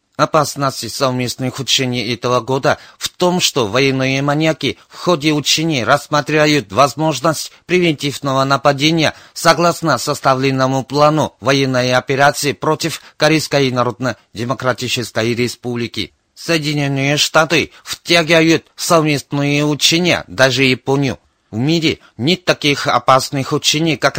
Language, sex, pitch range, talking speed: Russian, male, 130-155 Hz, 100 wpm